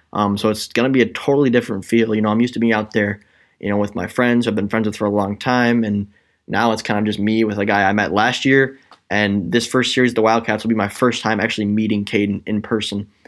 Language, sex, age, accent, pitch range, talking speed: English, male, 10-29, American, 105-120 Hz, 275 wpm